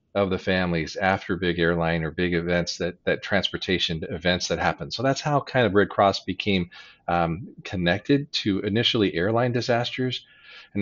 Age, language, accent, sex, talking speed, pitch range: 40-59, English, American, male, 165 wpm, 95-110 Hz